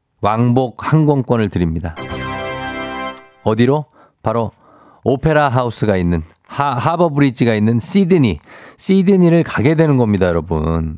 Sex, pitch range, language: male, 100-140 Hz, Korean